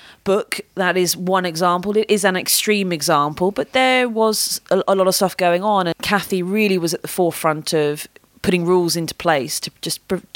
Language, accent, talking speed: English, British, 205 wpm